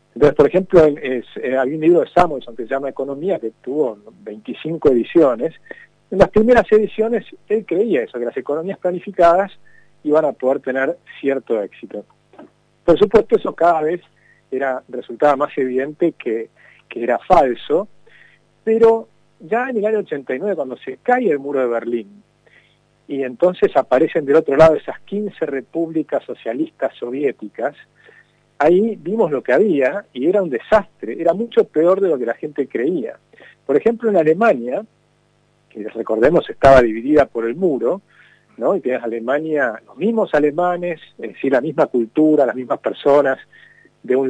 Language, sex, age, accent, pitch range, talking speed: Spanish, male, 40-59, Argentinian, 140-205 Hz, 155 wpm